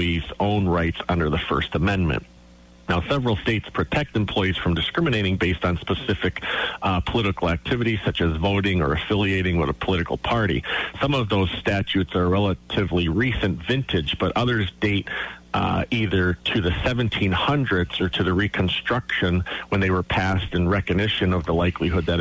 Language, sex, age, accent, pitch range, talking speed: English, male, 40-59, American, 85-105 Hz, 155 wpm